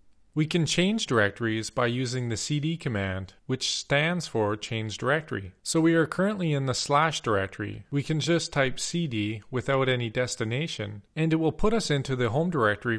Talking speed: 180 wpm